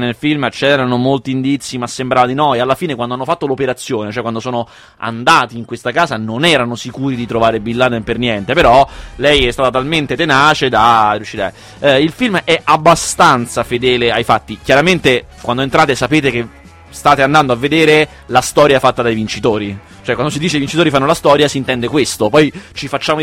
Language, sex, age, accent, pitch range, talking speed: Italian, male, 20-39, native, 120-155 Hz, 195 wpm